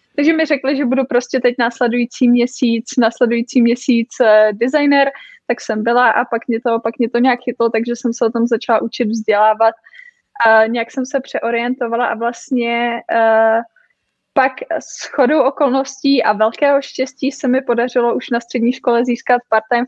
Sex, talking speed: female, 165 wpm